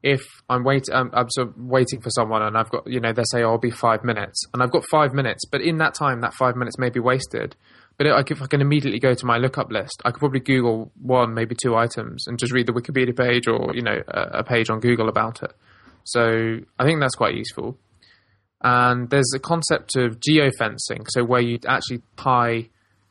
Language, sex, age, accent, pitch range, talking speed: English, male, 20-39, British, 115-135 Hz, 230 wpm